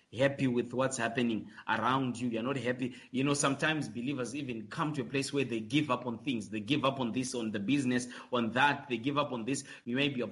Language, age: English, 30-49